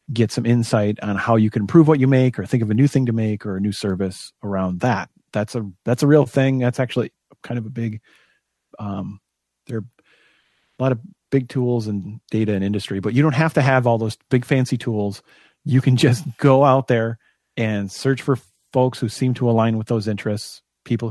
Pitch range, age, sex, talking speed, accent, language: 105-135 Hz, 40-59, male, 220 wpm, American, English